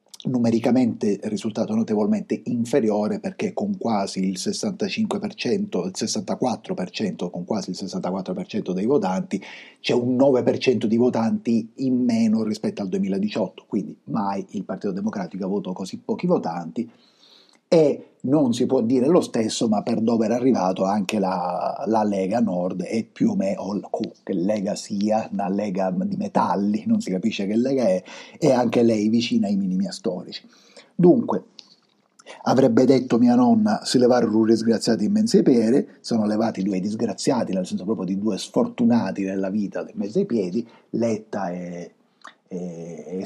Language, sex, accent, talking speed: Italian, male, native, 150 wpm